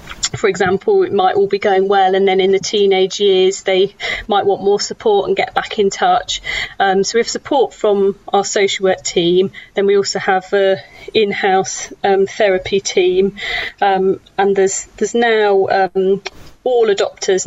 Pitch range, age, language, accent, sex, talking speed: 190-230 Hz, 30-49, English, British, female, 175 wpm